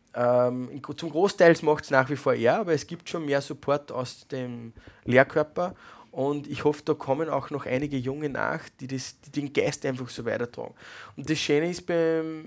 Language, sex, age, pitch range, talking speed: German, male, 20-39, 140-165 Hz, 195 wpm